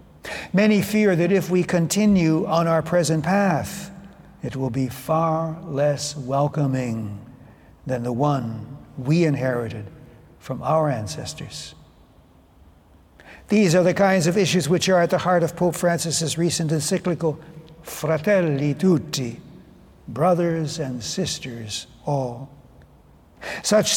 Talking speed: 120 wpm